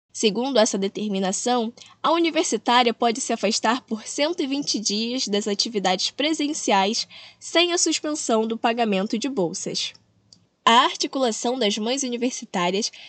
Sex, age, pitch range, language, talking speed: female, 10-29, 215-280 Hz, Portuguese, 120 wpm